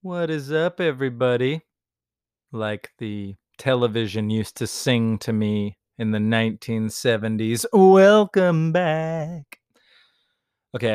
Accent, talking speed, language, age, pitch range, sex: American, 100 wpm, English, 30-49, 110-150 Hz, male